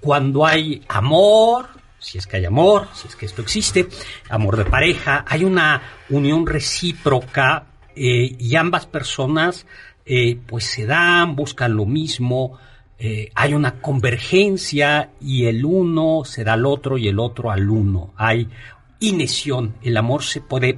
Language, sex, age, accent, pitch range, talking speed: Spanish, male, 50-69, Mexican, 110-145 Hz, 155 wpm